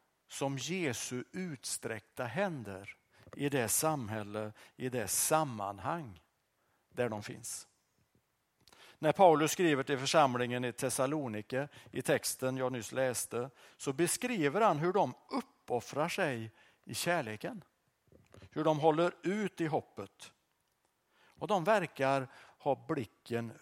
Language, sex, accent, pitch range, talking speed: Swedish, male, Norwegian, 110-150 Hz, 115 wpm